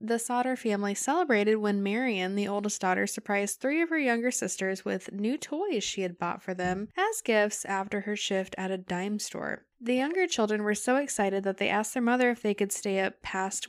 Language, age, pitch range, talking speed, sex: English, 10-29, 195-235 Hz, 215 wpm, female